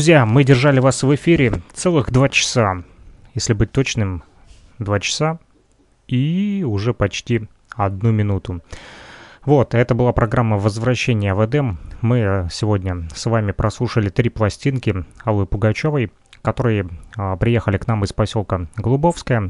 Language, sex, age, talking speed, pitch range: Russian, male, 30-49, 130 wpm, 100-125 Hz